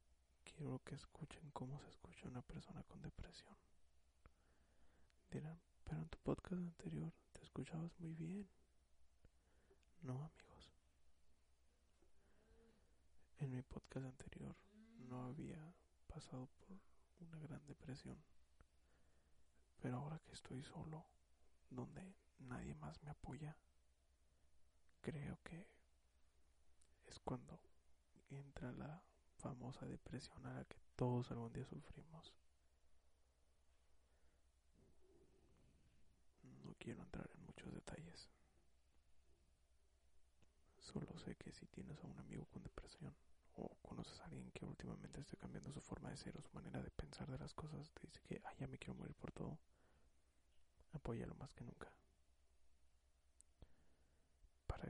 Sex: male